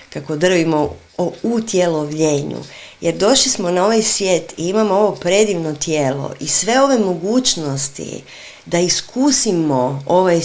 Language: Croatian